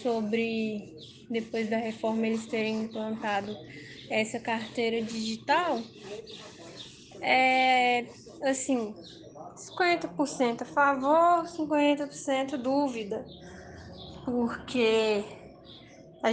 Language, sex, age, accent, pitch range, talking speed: Portuguese, female, 10-29, Brazilian, 225-270 Hz, 70 wpm